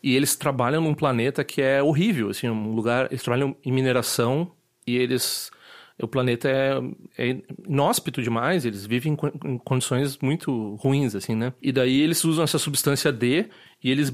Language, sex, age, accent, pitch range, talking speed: Portuguese, male, 30-49, Brazilian, 125-150 Hz, 175 wpm